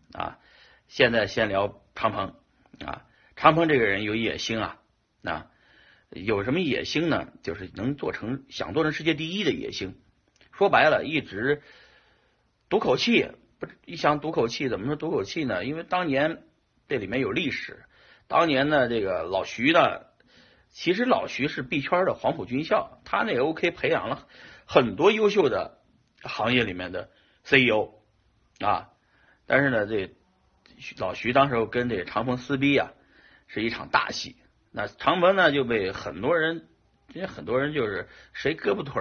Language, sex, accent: Chinese, male, native